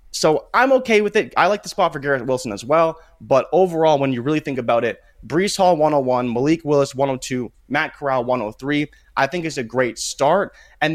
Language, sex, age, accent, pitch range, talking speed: English, male, 20-39, American, 130-180 Hz, 210 wpm